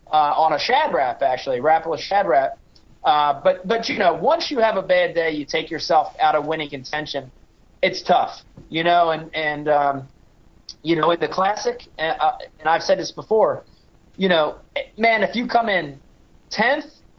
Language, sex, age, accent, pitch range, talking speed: English, male, 30-49, American, 155-210 Hz, 190 wpm